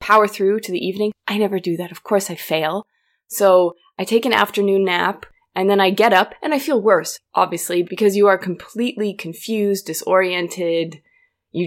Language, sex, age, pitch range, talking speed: English, female, 20-39, 175-210 Hz, 185 wpm